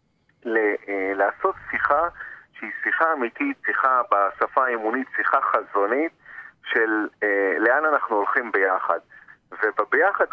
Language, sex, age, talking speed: Hebrew, male, 40-59, 100 wpm